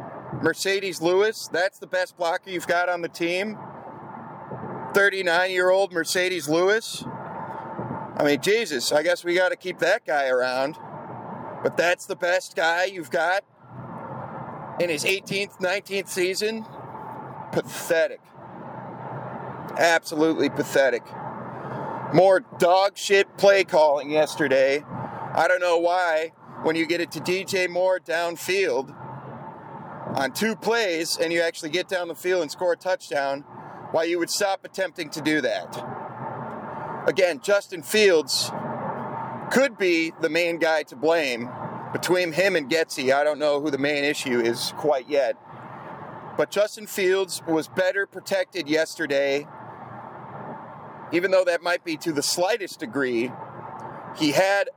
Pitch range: 155-190 Hz